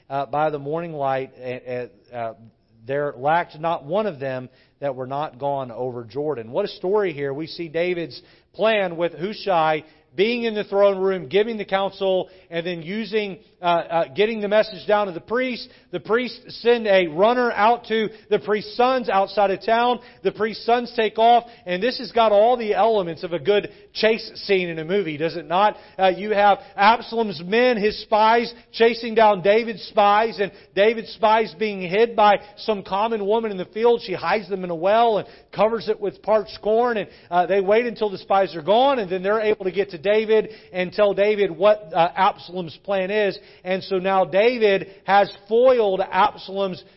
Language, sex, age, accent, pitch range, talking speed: English, male, 40-59, American, 160-210 Hz, 195 wpm